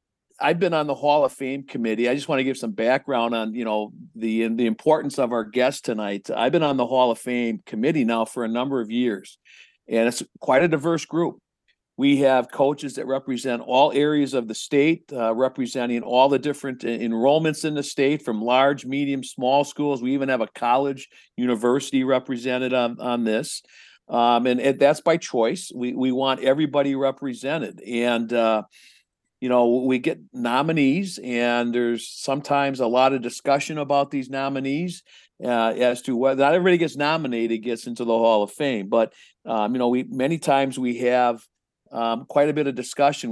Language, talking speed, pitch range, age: English, 190 wpm, 120-140 Hz, 50-69